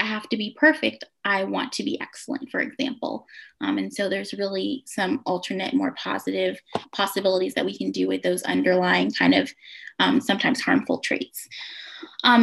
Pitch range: 205-275 Hz